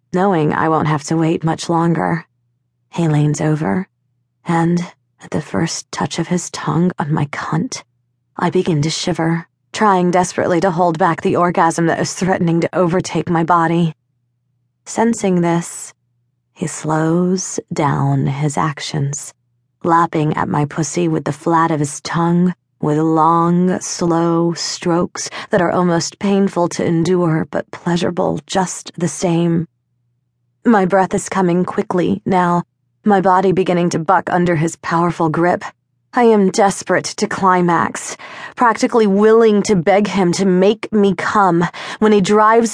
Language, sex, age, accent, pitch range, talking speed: English, female, 20-39, American, 155-195 Hz, 145 wpm